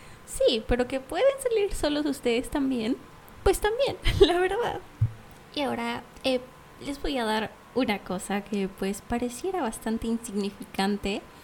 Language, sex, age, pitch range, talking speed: Spanish, female, 20-39, 215-305 Hz, 135 wpm